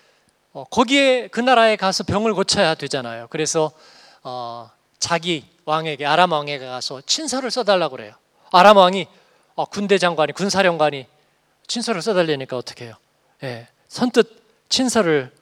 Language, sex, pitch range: Korean, male, 145-215 Hz